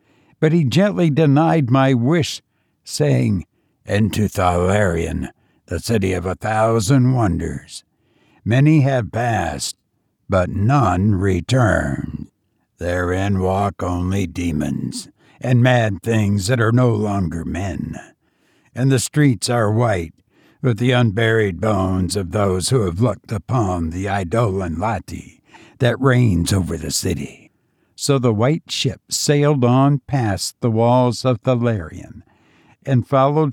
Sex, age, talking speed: male, 60-79, 125 wpm